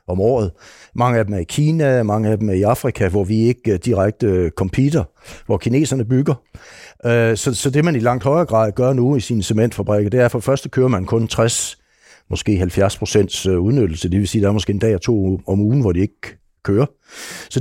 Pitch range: 100-130 Hz